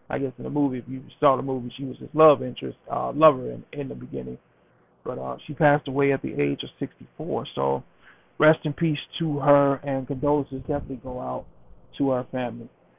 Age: 40-59